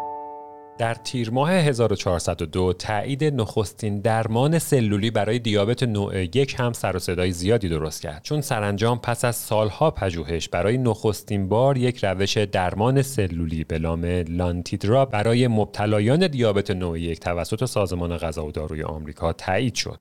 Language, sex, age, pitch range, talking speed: Persian, male, 40-59, 90-125 Hz, 140 wpm